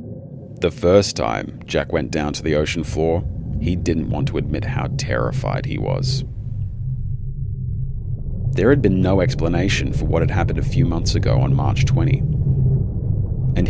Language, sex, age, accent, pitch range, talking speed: English, male, 30-49, Australian, 100-130 Hz, 160 wpm